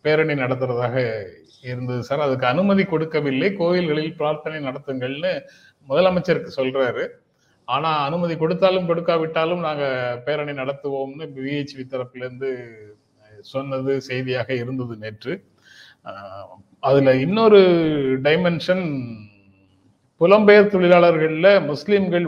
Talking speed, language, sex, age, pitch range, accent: 85 wpm, Tamil, male, 30-49, 125-165 Hz, native